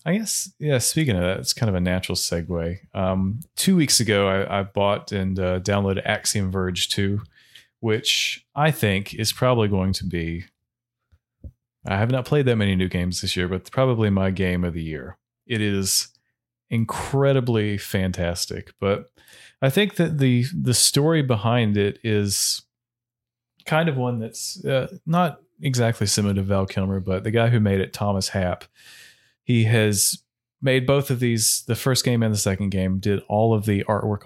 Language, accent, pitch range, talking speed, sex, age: English, American, 95-120 Hz, 175 wpm, male, 30-49